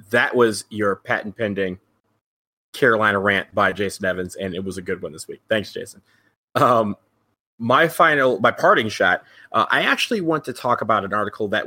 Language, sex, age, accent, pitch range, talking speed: English, male, 30-49, American, 105-125 Hz, 180 wpm